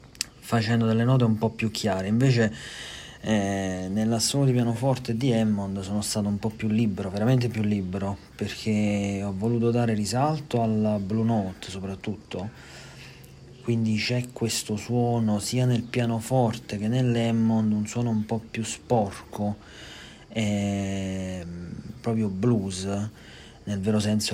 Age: 40-59